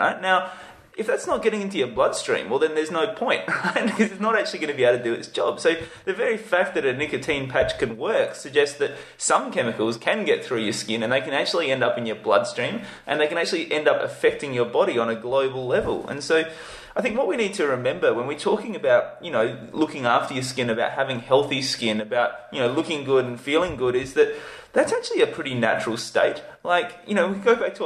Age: 20-39